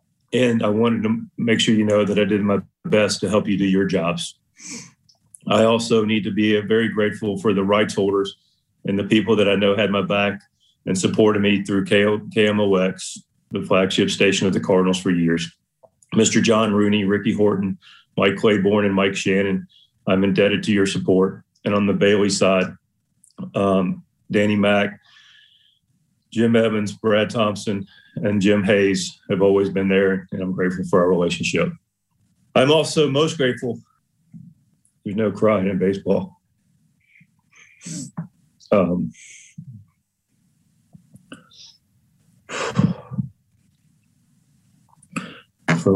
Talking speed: 135 wpm